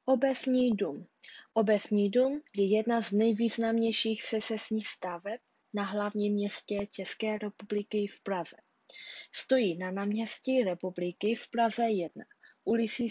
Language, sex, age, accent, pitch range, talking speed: Czech, female, 20-39, native, 190-225 Hz, 120 wpm